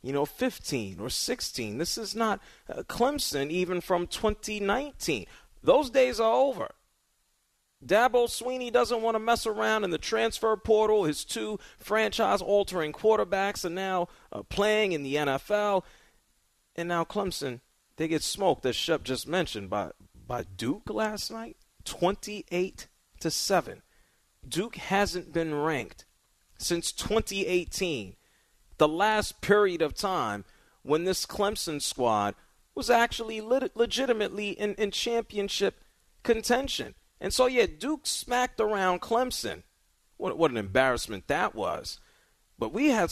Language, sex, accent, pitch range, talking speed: English, male, American, 145-225 Hz, 130 wpm